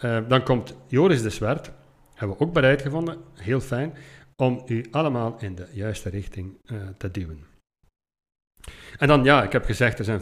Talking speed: 180 wpm